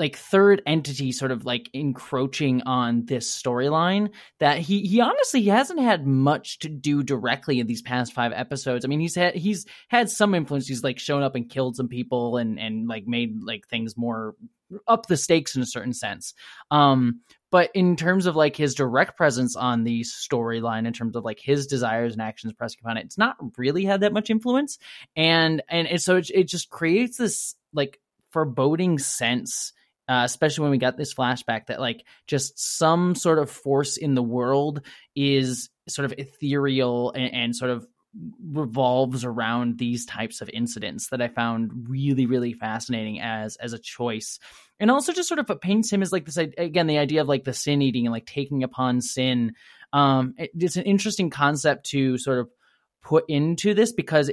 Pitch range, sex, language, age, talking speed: 125-170 Hz, male, English, 20-39, 195 wpm